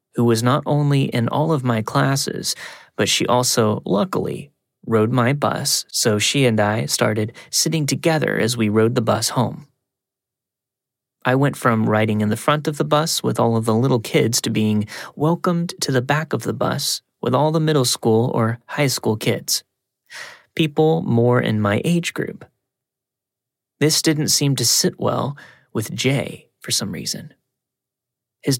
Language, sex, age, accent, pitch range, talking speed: English, male, 30-49, American, 115-140 Hz, 170 wpm